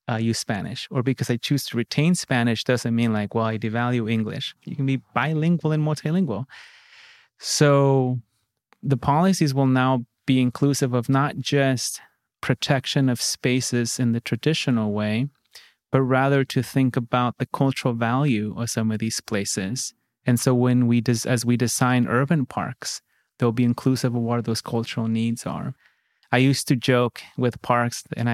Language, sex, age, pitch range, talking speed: English, male, 30-49, 120-145 Hz, 165 wpm